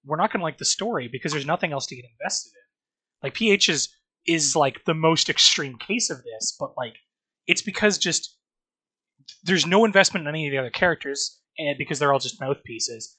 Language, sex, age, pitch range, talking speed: English, male, 20-39, 140-200 Hz, 210 wpm